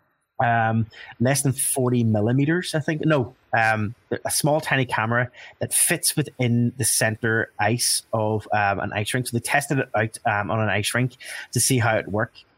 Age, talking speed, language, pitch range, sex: 20-39, 185 wpm, English, 100-120 Hz, male